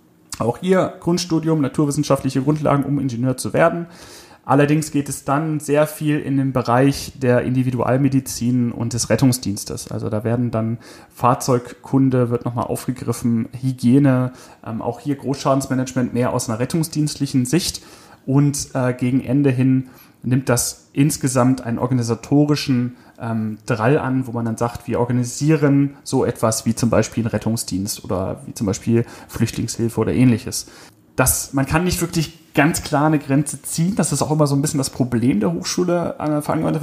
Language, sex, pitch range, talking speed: German, male, 120-150 Hz, 160 wpm